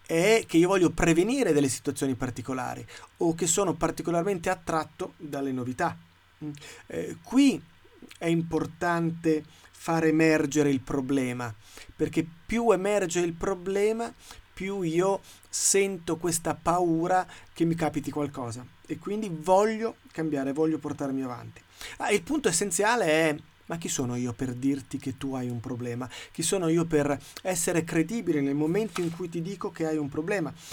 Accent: native